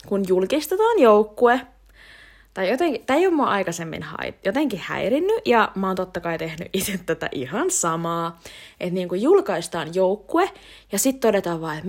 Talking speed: 155 wpm